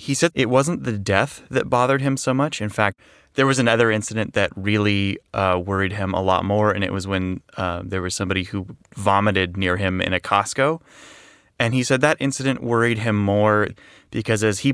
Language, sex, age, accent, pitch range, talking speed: English, male, 30-49, American, 100-125 Hz, 210 wpm